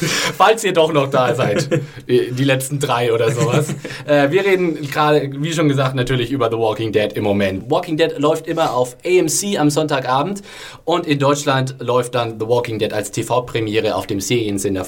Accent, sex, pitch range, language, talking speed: German, male, 115-150 Hz, German, 180 wpm